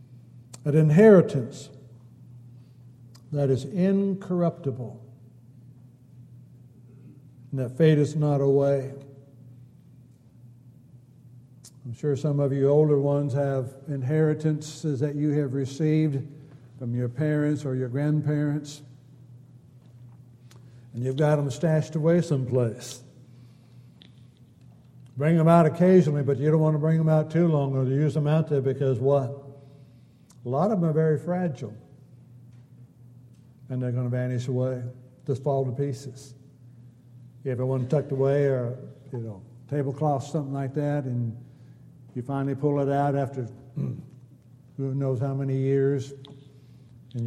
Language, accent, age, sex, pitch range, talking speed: English, American, 60-79, male, 125-145 Hz, 125 wpm